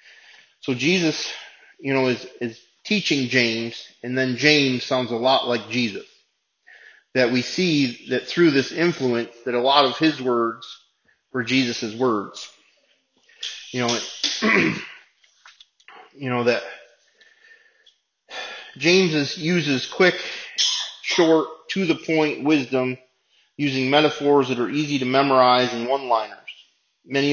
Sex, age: male, 30-49